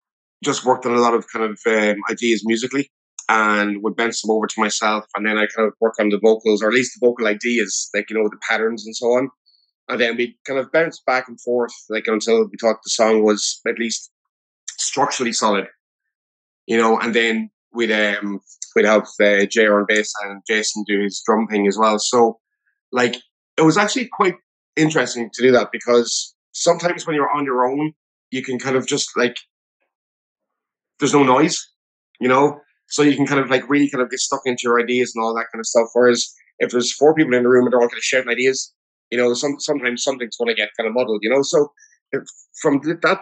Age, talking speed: 20-39, 225 wpm